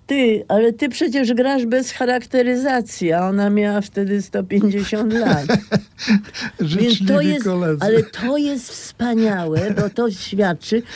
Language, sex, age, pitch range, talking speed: Polish, female, 50-69, 125-205 Hz, 125 wpm